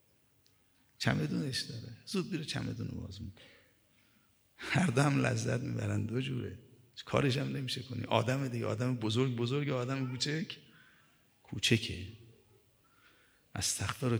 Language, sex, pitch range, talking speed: Persian, male, 110-130 Hz, 125 wpm